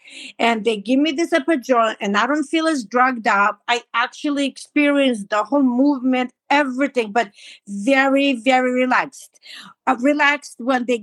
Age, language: 50-69, English